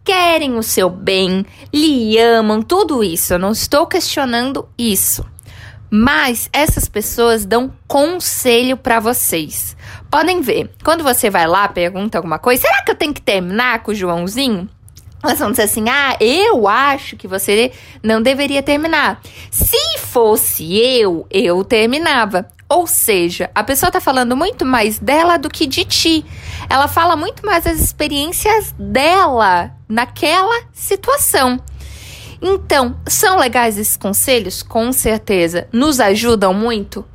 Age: 20-39